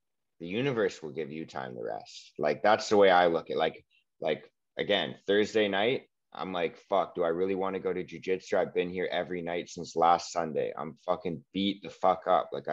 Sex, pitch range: male, 90-110 Hz